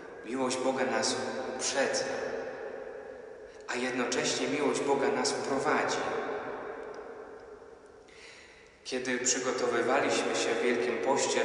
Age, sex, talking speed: 30-49, male, 85 wpm